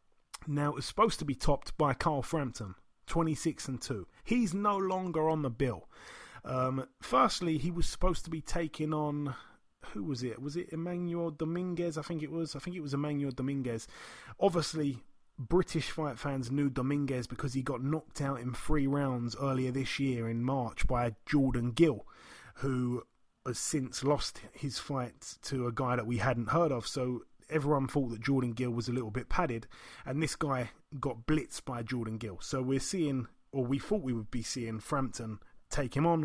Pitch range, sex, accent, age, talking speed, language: 125-160 Hz, male, British, 30-49, 190 wpm, English